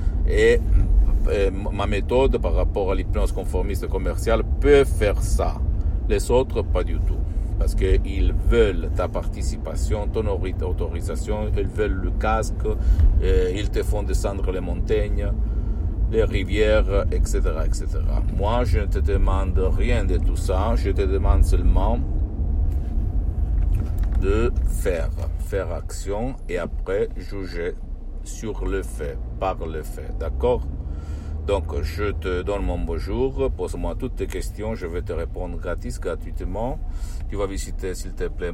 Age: 60-79